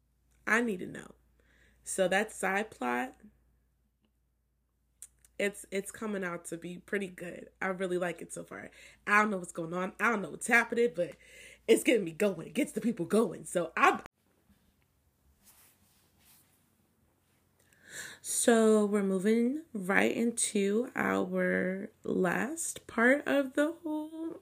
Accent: American